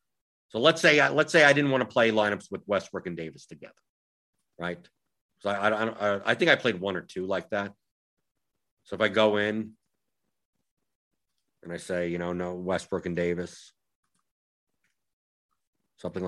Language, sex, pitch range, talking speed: English, male, 90-115 Hz, 160 wpm